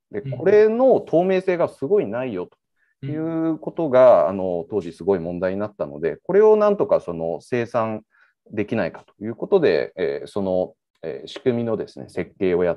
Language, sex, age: Japanese, male, 40-59